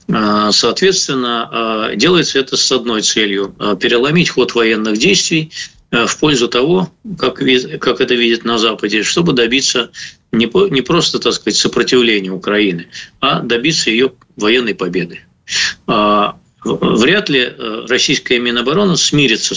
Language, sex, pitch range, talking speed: Russian, male, 110-150 Hz, 110 wpm